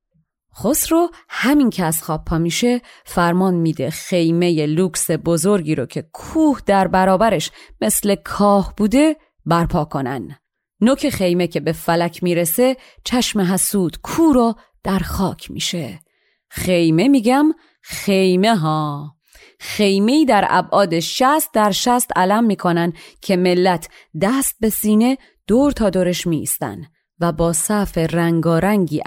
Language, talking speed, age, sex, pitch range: Persian, 125 wpm, 30-49, female, 165-205 Hz